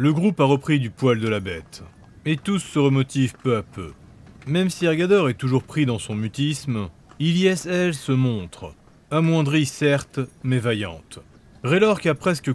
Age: 30-49